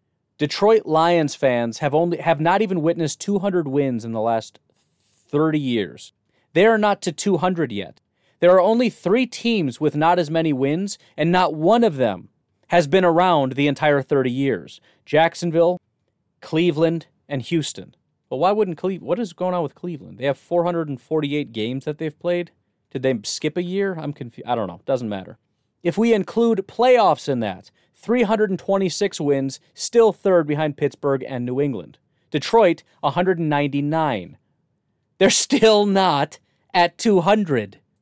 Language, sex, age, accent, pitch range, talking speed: English, male, 30-49, American, 140-185 Hz, 155 wpm